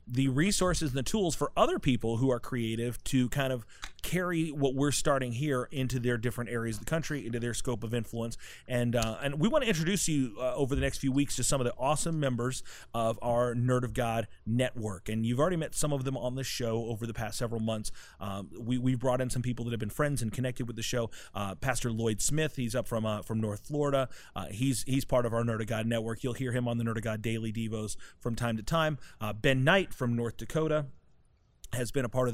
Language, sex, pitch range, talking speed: English, male, 115-135 Hz, 250 wpm